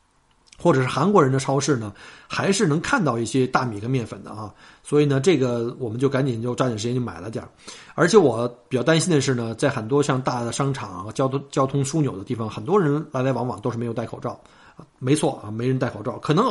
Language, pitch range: Chinese, 115-145 Hz